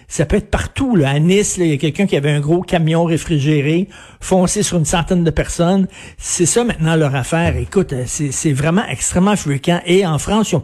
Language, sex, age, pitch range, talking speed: French, male, 60-79, 150-190 Hz, 220 wpm